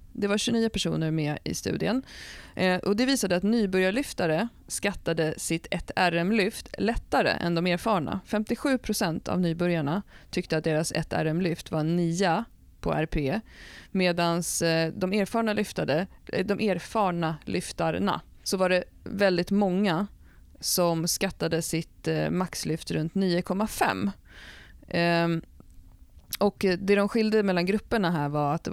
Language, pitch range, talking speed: Swedish, 160-195 Hz, 135 wpm